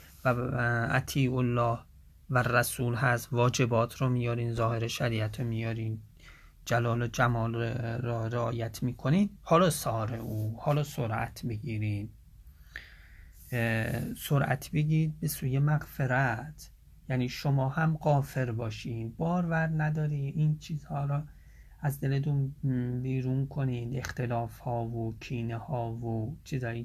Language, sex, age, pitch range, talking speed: English, male, 30-49, 115-150 Hz, 115 wpm